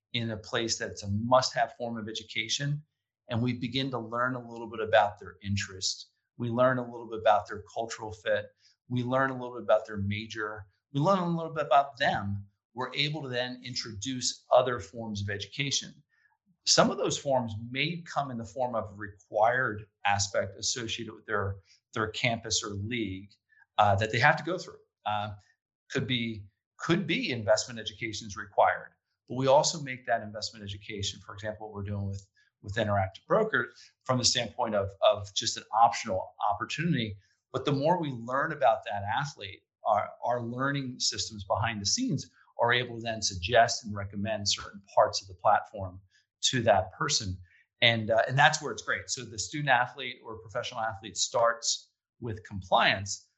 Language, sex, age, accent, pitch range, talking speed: English, male, 40-59, American, 100-125 Hz, 180 wpm